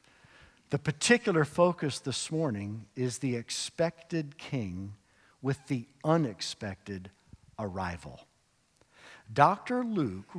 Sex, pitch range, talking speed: male, 105-145 Hz, 85 wpm